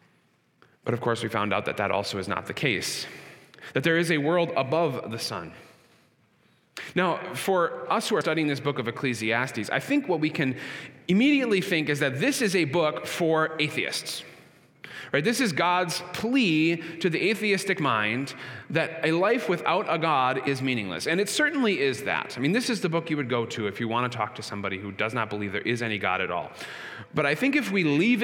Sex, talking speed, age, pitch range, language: male, 215 wpm, 30-49, 130-200 Hz, English